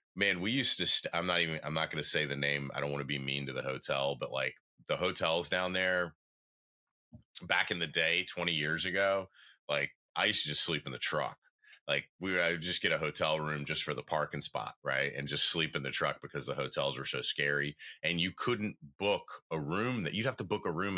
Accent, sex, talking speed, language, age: American, male, 240 wpm, English, 30-49